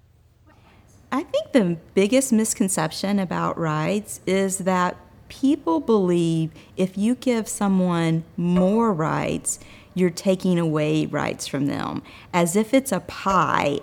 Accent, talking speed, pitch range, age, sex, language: American, 120 wpm, 165-210 Hz, 40-59, female, English